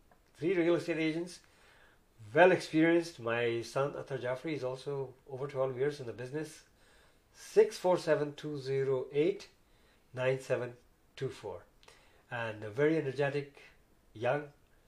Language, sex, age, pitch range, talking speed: Urdu, male, 50-69, 125-165 Hz, 95 wpm